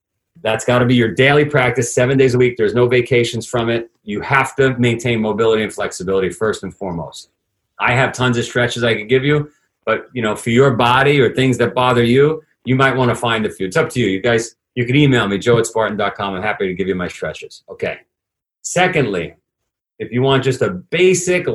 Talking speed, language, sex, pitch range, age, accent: 220 wpm, English, male, 120-145 Hz, 40-59, American